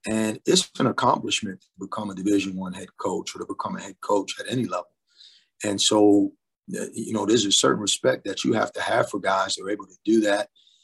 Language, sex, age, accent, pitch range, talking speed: English, male, 30-49, American, 105-130 Hz, 225 wpm